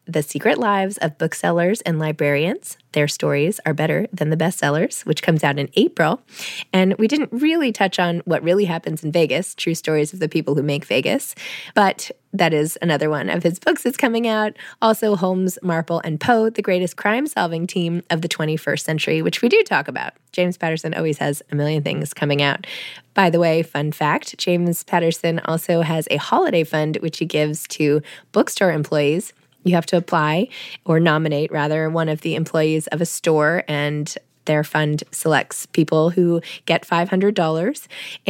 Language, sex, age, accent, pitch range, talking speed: English, female, 20-39, American, 155-195 Hz, 180 wpm